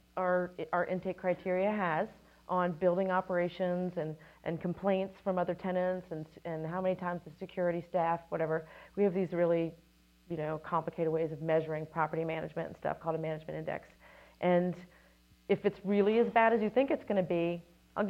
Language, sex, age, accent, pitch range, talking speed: English, female, 40-59, American, 160-190 Hz, 180 wpm